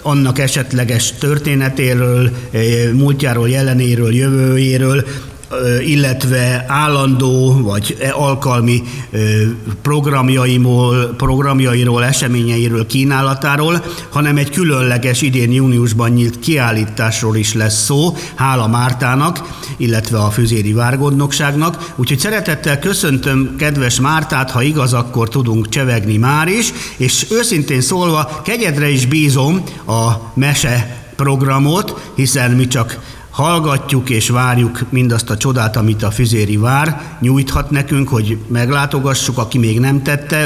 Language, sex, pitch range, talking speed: Hungarian, male, 120-145 Hz, 105 wpm